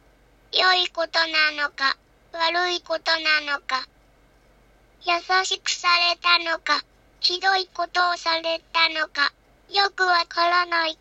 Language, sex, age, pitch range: Japanese, male, 20-39, 320-360 Hz